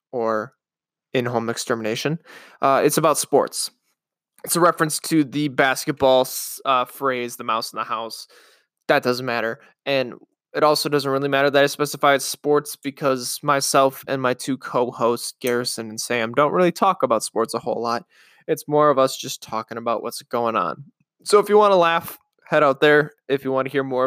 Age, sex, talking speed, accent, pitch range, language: 20-39, male, 190 wpm, American, 120-150 Hz, English